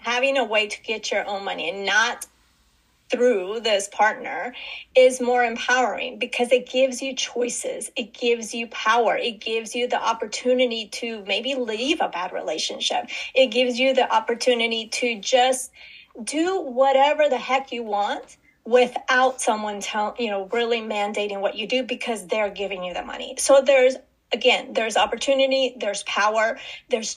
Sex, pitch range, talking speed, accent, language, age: female, 210-255 Hz, 160 wpm, American, English, 30-49